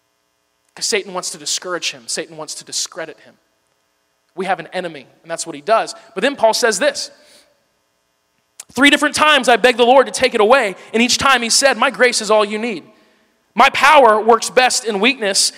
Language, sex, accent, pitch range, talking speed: English, male, American, 170-245 Hz, 205 wpm